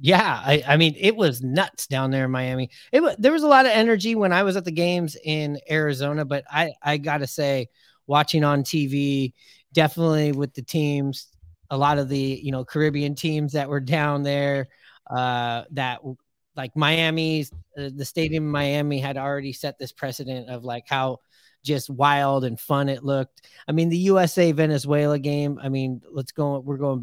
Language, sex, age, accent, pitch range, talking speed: English, male, 30-49, American, 135-160 Hz, 190 wpm